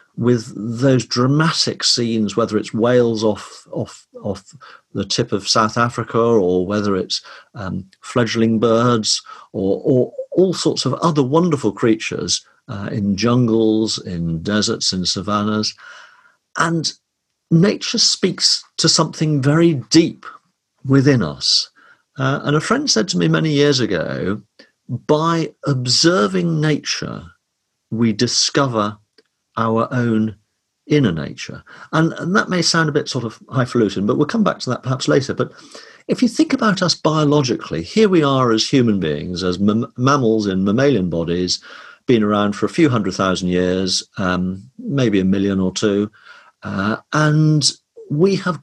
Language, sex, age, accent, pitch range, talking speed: English, male, 50-69, British, 105-150 Hz, 145 wpm